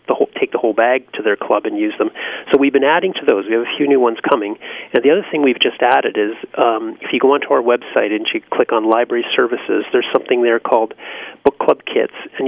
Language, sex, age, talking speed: English, male, 40-59, 260 wpm